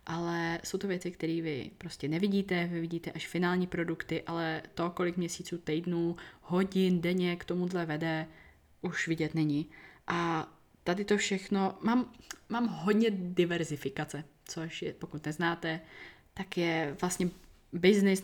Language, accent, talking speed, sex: Czech, native, 140 wpm, female